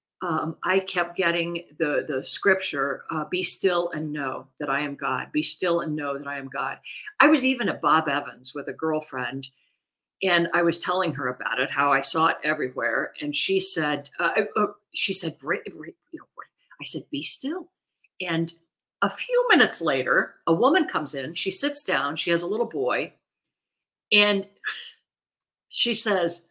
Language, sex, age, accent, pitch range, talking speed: English, female, 50-69, American, 160-245 Hz, 170 wpm